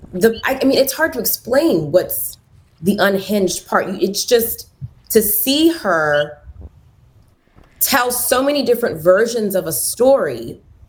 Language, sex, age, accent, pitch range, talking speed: English, female, 20-39, American, 185-225 Hz, 130 wpm